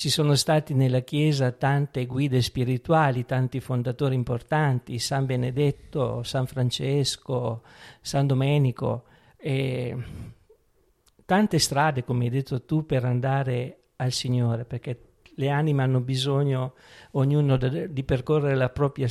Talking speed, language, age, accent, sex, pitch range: 115 wpm, Italian, 50-69, native, male, 125-145 Hz